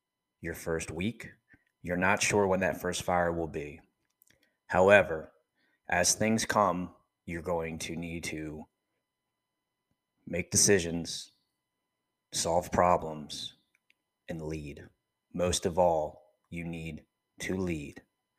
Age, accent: 30-49, American